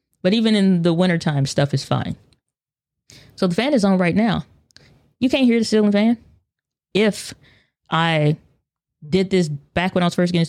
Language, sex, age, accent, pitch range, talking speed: English, female, 20-39, American, 145-185 Hz, 175 wpm